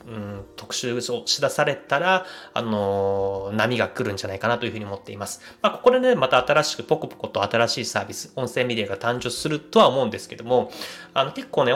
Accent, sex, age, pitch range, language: native, male, 20-39, 110-165 Hz, Japanese